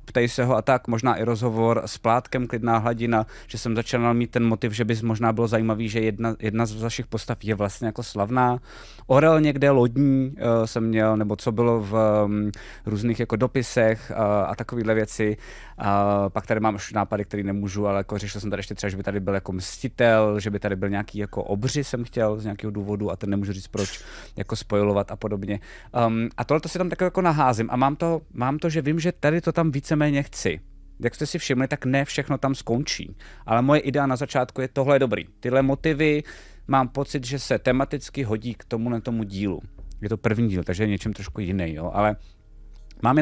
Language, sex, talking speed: Czech, male, 215 wpm